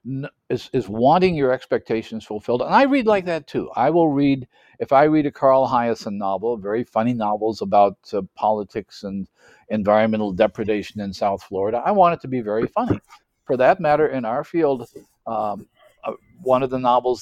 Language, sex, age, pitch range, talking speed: English, male, 50-69, 105-135 Hz, 185 wpm